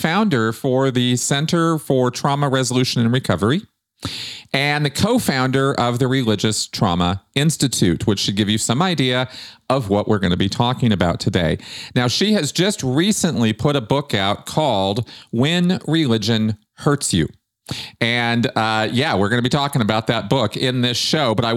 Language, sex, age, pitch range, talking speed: English, male, 40-59, 110-155 Hz, 175 wpm